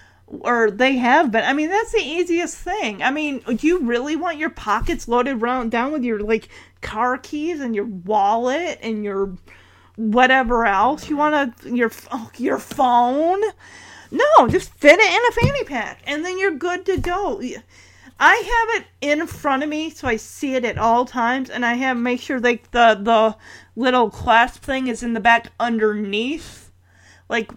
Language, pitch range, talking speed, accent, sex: English, 215-275 Hz, 180 wpm, American, female